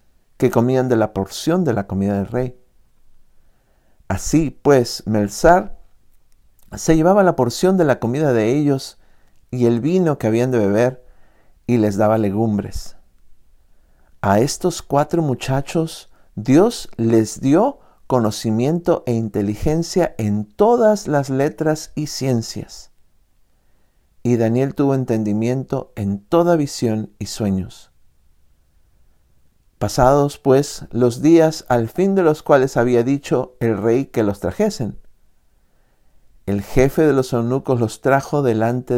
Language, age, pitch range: Spanish, 50-69, 105-140 Hz